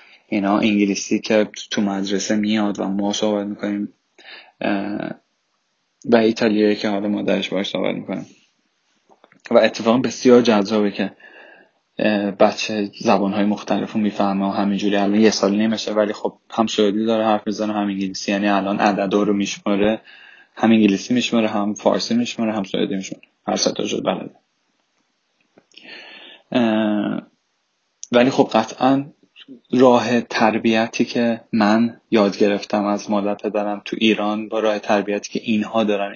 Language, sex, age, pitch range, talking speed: Persian, male, 10-29, 100-115 Hz, 135 wpm